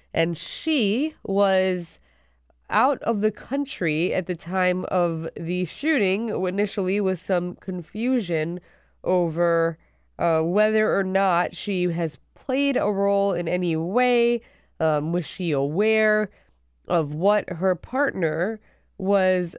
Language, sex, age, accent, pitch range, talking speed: English, female, 20-39, American, 170-210 Hz, 120 wpm